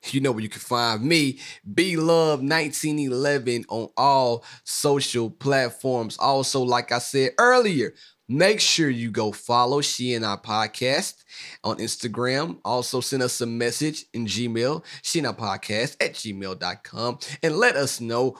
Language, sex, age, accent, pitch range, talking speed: English, male, 30-49, American, 115-150 Hz, 140 wpm